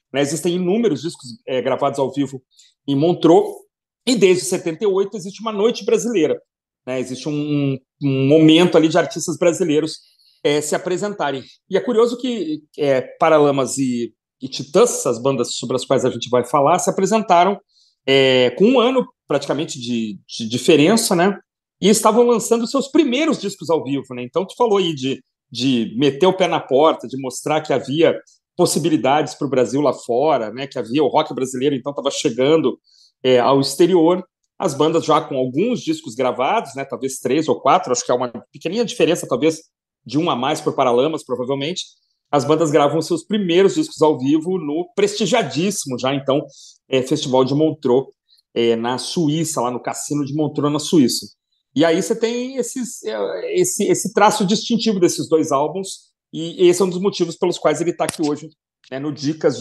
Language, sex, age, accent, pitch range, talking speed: Portuguese, male, 40-59, Brazilian, 135-195 Hz, 175 wpm